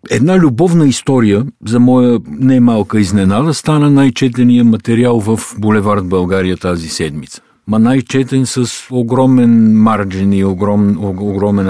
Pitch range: 90-120 Hz